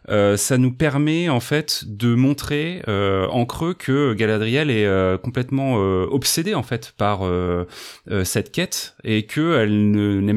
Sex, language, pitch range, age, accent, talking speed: male, French, 105-135 Hz, 30-49, French, 170 wpm